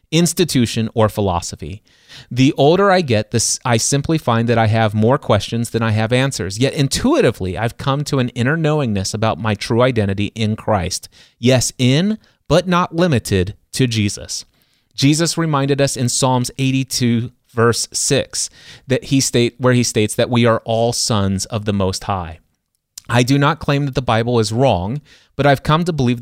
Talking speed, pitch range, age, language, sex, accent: 180 wpm, 110-130 Hz, 30-49, English, male, American